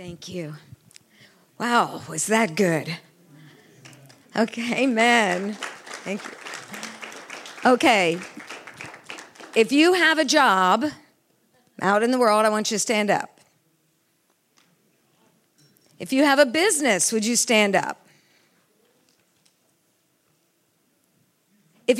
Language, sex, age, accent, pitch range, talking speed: English, female, 50-69, American, 225-315 Hz, 100 wpm